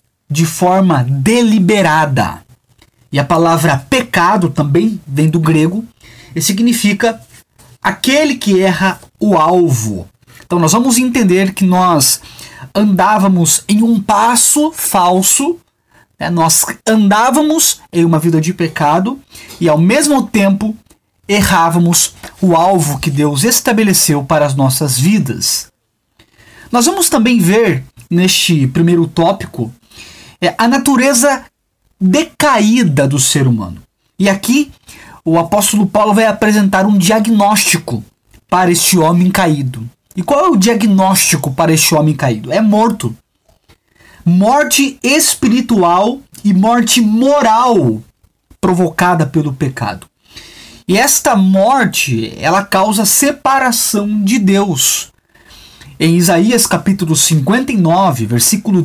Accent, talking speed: Brazilian, 110 wpm